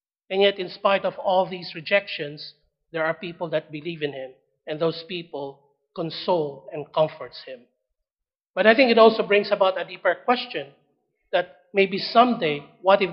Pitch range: 160-195 Hz